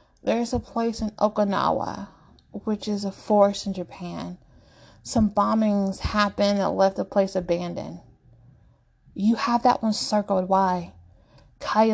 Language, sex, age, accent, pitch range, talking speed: English, female, 20-39, American, 180-210 Hz, 130 wpm